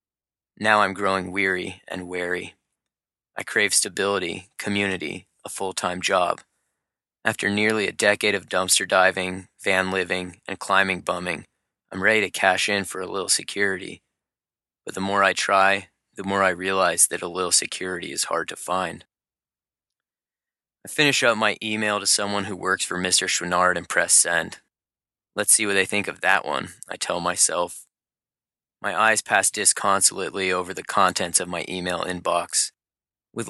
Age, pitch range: 20-39, 90-100 Hz